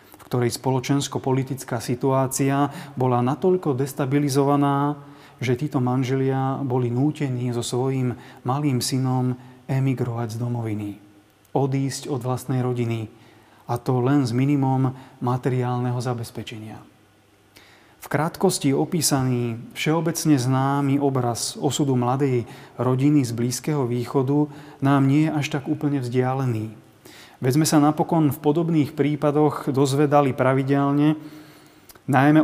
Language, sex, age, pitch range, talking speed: Slovak, male, 30-49, 125-145 Hz, 105 wpm